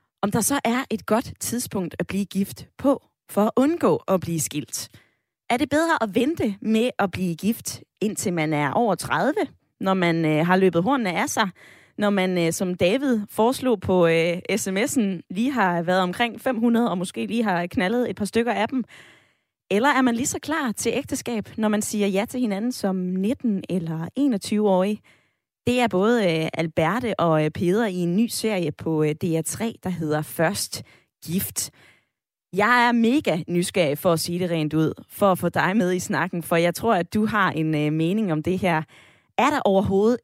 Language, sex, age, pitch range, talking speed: Danish, female, 20-39, 170-230 Hz, 190 wpm